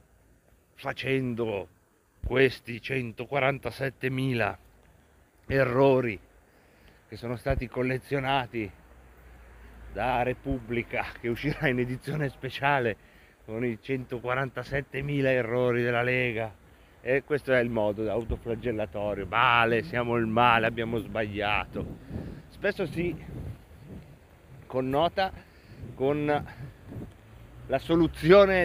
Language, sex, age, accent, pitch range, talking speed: Italian, male, 40-59, native, 110-150 Hz, 80 wpm